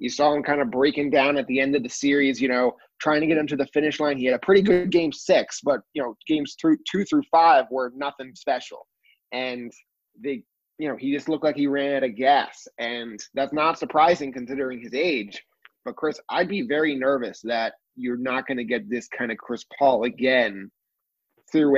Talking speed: 220 wpm